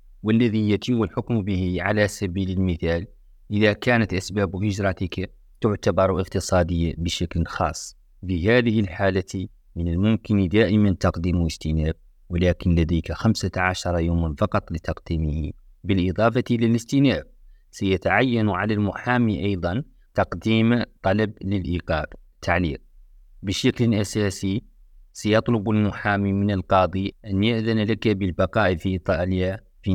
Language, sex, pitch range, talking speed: Arabic, male, 90-105 Hz, 105 wpm